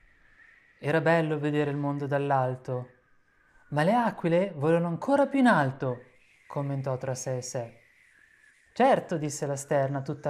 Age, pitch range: 20-39, 135-200 Hz